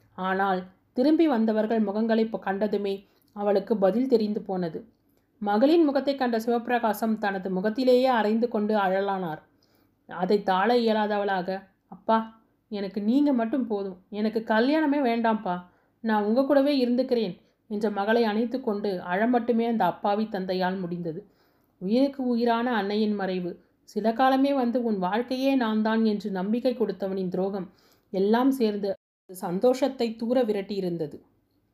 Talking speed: 115 wpm